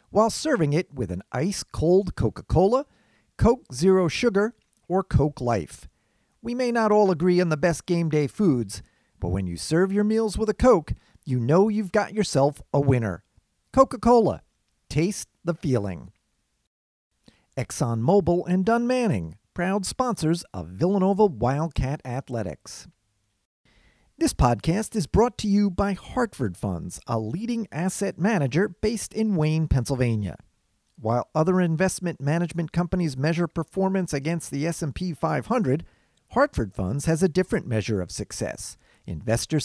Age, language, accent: 40-59, English, American